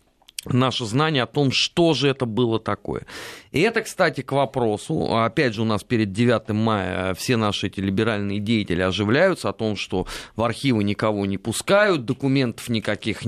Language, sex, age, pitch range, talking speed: Russian, male, 30-49, 105-135 Hz, 165 wpm